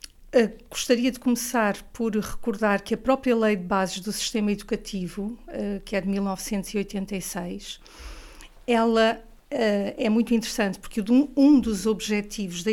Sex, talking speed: female, 140 wpm